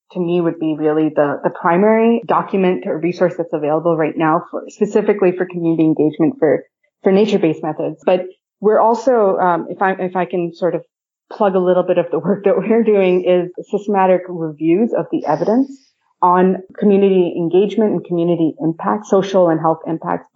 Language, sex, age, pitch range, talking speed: English, female, 30-49, 165-205 Hz, 180 wpm